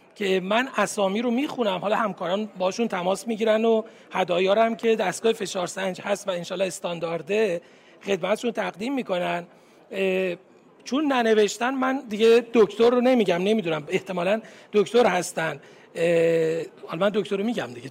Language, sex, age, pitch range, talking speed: Persian, male, 40-59, 185-230 Hz, 140 wpm